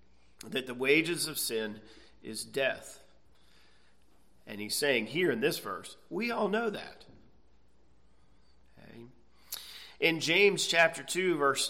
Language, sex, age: English, male, 40-59